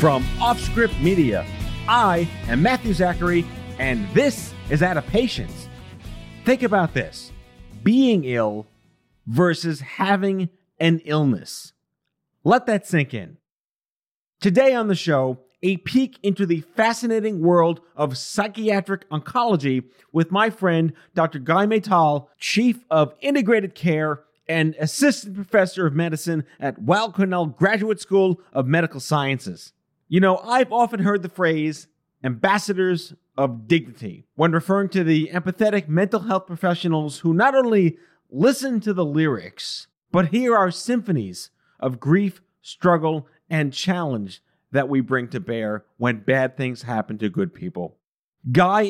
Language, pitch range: English, 150-200 Hz